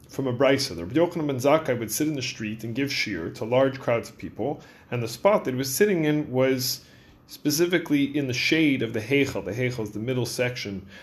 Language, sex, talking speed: English, male, 210 wpm